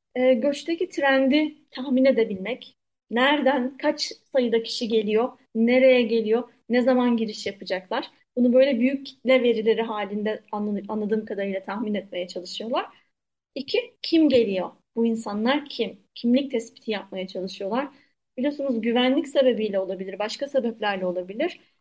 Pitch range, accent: 220-260 Hz, native